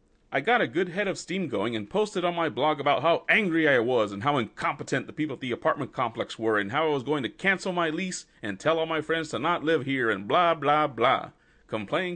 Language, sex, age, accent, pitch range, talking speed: English, male, 30-49, American, 110-170 Hz, 250 wpm